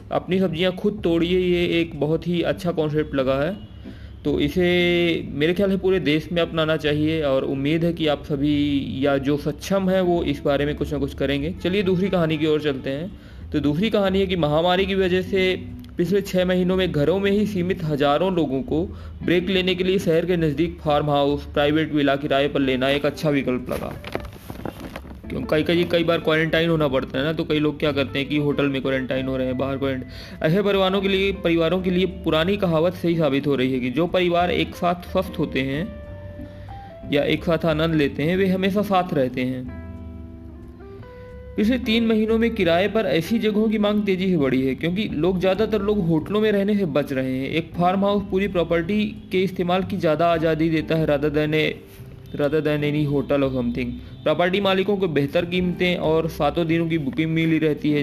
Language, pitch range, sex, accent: Hindi, 140-185 Hz, male, native